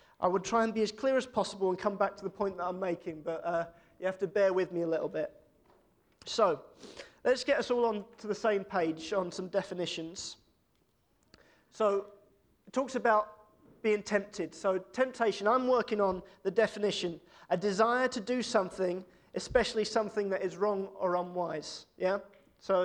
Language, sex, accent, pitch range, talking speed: English, male, British, 180-220 Hz, 180 wpm